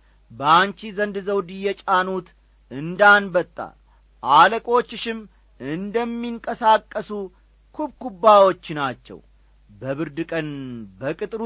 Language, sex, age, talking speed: Amharic, male, 40-59, 65 wpm